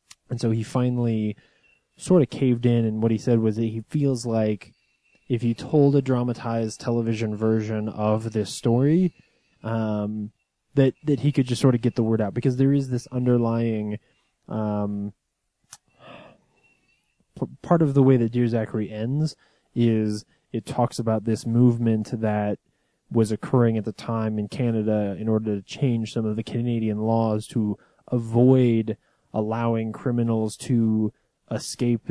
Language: English